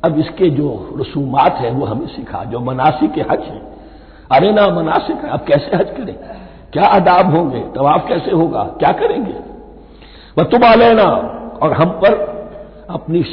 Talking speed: 150 wpm